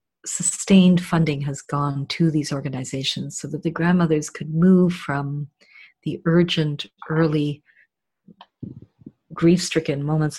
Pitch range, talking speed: 150-170 Hz, 110 wpm